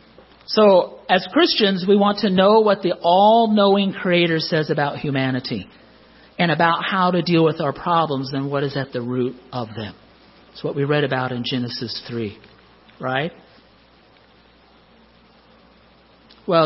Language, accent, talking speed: English, American, 145 wpm